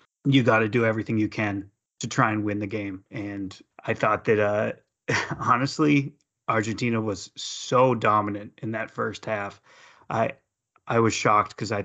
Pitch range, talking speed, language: 110-135 Hz, 165 wpm, English